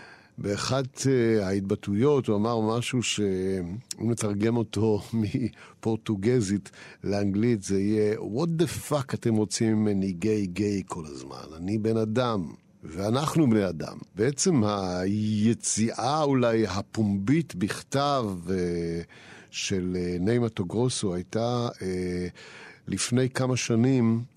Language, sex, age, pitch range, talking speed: Hebrew, male, 50-69, 95-125 Hz, 110 wpm